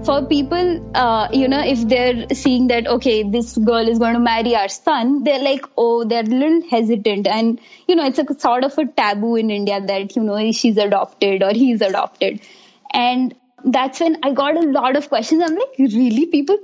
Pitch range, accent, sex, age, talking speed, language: 225-290 Hz, Indian, female, 20-39, 205 wpm, English